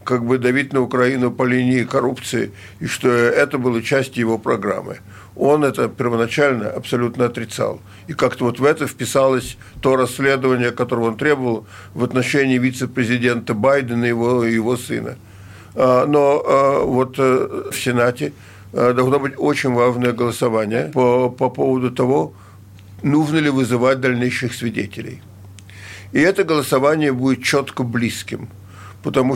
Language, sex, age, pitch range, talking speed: Russian, male, 50-69, 115-135 Hz, 130 wpm